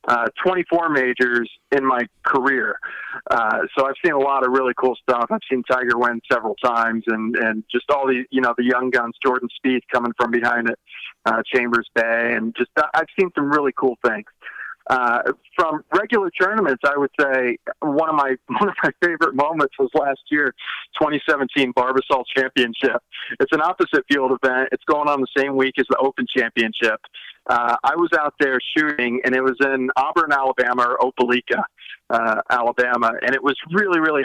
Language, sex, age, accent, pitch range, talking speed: English, male, 40-59, American, 120-140 Hz, 185 wpm